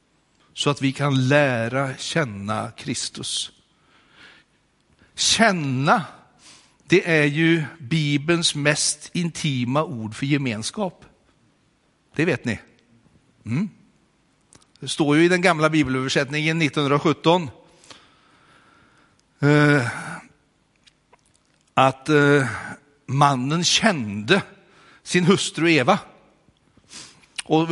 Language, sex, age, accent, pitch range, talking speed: Swedish, male, 60-79, native, 140-185 Hz, 75 wpm